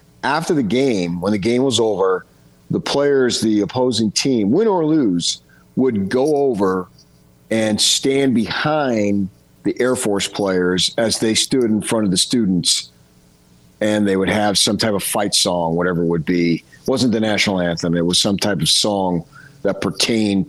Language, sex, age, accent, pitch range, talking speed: English, male, 50-69, American, 85-110 Hz, 175 wpm